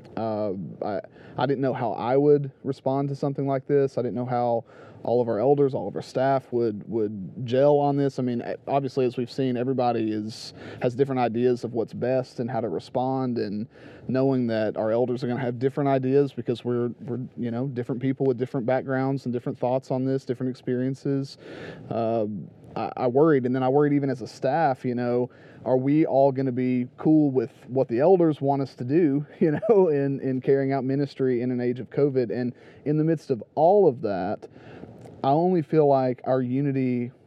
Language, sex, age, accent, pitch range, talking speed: English, male, 30-49, American, 125-145 Hz, 210 wpm